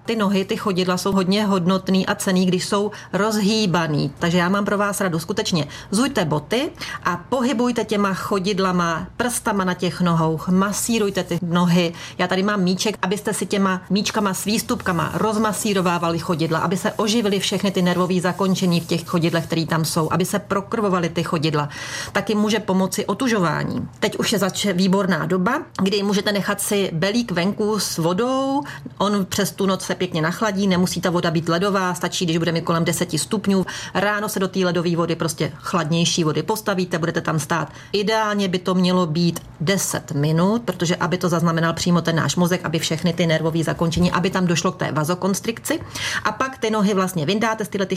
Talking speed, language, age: 185 wpm, Czech, 30-49